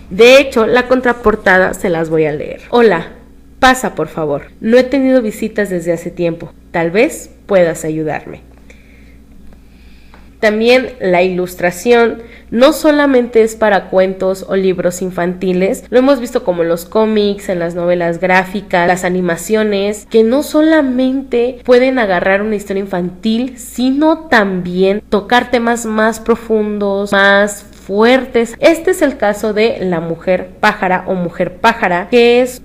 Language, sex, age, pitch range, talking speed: Spanish, female, 20-39, 185-235 Hz, 140 wpm